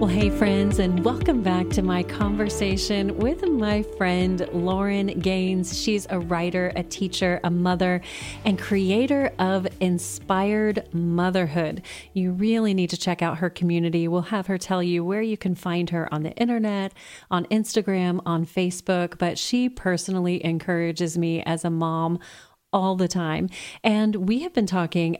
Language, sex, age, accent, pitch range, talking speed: English, female, 30-49, American, 170-195 Hz, 160 wpm